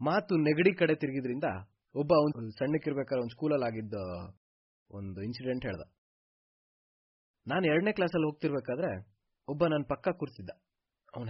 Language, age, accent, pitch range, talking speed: Kannada, 20-39, native, 105-150 Hz, 120 wpm